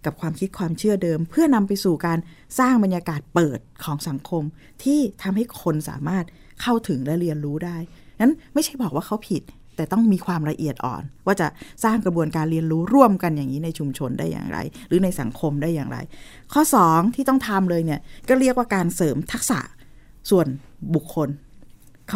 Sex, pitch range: female, 155-220 Hz